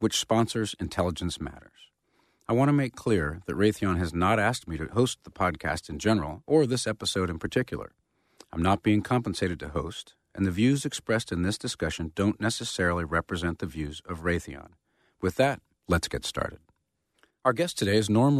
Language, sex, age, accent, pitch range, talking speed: English, male, 40-59, American, 85-120 Hz, 185 wpm